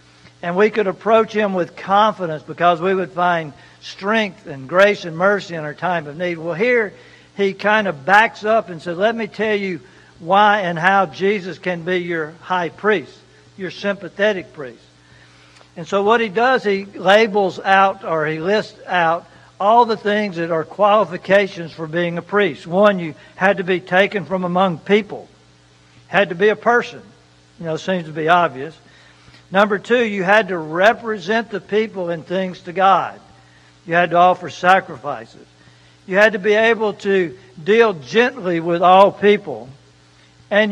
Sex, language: male, English